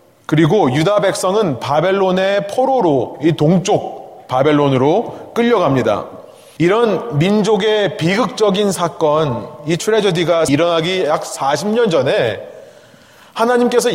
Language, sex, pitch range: Korean, male, 150-210 Hz